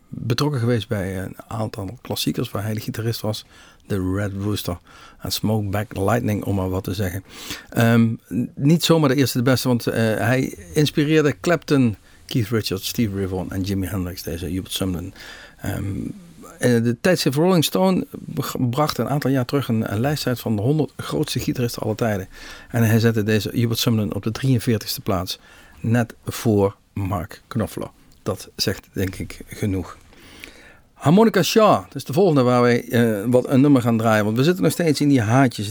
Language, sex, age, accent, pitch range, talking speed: Dutch, male, 50-69, Dutch, 100-130 Hz, 180 wpm